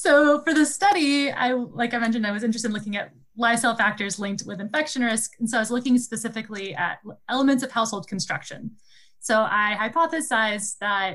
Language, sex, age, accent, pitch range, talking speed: English, female, 20-39, American, 200-240 Hz, 190 wpm